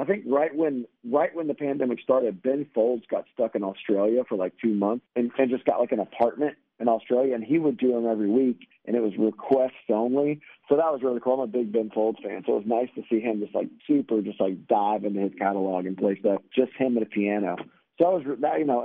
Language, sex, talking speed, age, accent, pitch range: English, male, 260 wpm, 40-59, American, 105-135 Hz